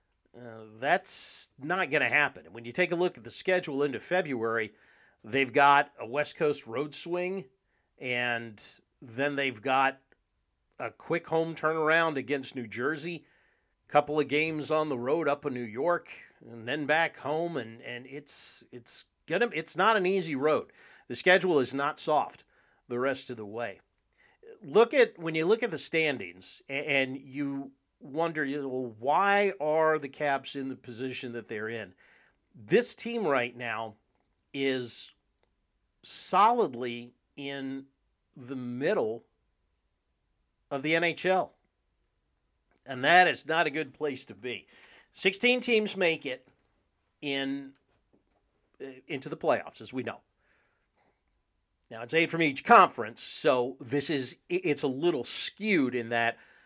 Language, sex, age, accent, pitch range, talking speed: English, male, 40-59, American, 120-160 Hz, 150 wpm